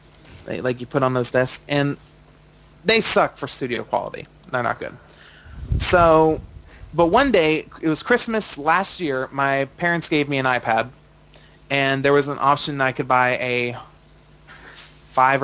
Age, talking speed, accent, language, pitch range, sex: 30-49, 160 wpm, American, English, 125-150 Hz, male